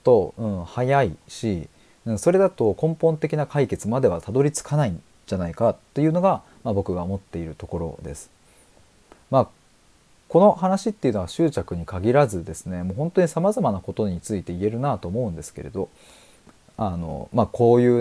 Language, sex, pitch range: Japanese, male, 95-150 Hz